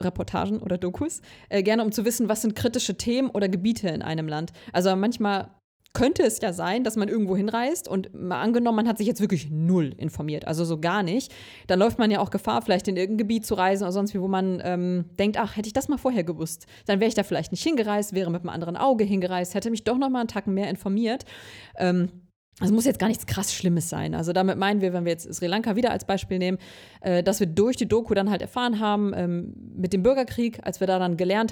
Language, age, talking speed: German, 20-39, 245 wpm